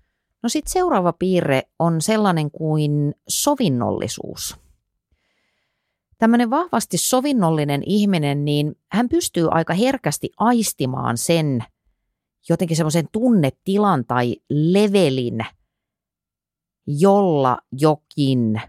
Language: Finnish